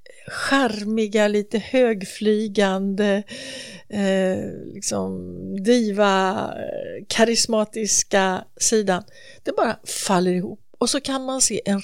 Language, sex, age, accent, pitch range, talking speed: English, female, 60-79, Swedish, 190-250 Hz, 90 wpm